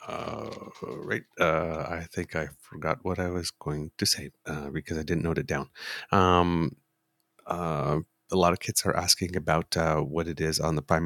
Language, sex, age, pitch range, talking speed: English, male, 30-49, 80-105 Hz, 195 wpm